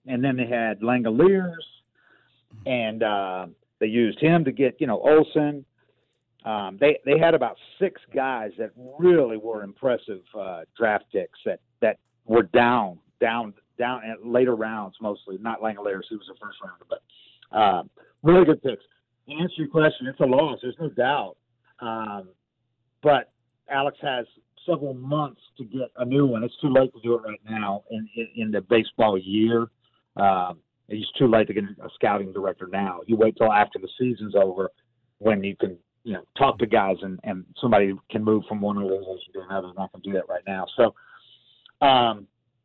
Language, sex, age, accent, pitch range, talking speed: English, male, 50-69, American, 110-135 Hz, 185 wpm